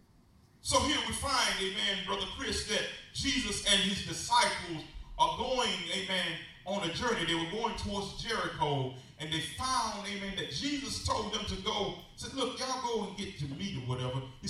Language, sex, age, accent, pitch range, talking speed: English, male, 40-59, American, 155-225 Hz, 185 wpm